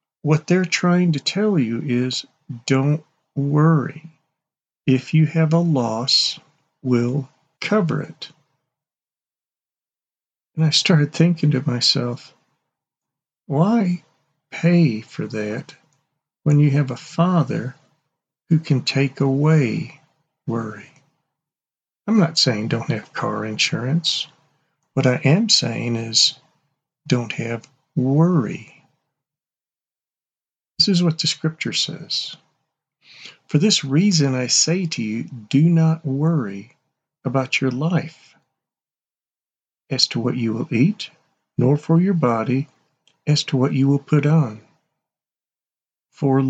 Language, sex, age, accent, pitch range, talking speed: English, male, 50-69, American, 130-160 Hz, 115 wpm